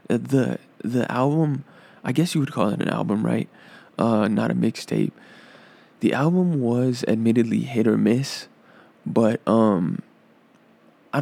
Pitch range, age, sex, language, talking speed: 110-125 Hz, 20-39, male, English, 140 wpm